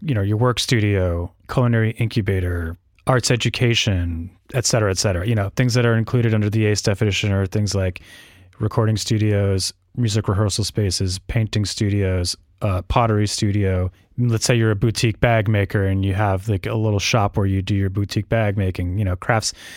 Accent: American